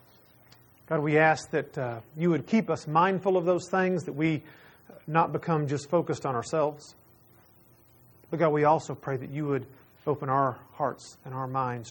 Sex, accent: male, American